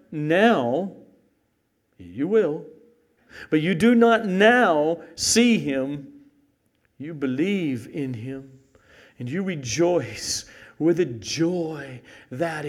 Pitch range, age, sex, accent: 110-155 Hz, 50-69, male, American